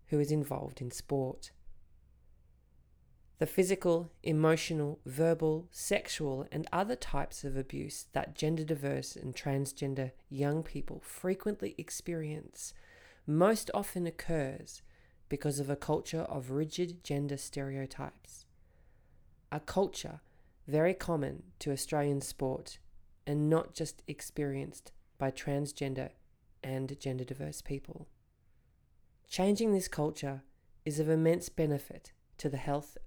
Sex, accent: female, Australian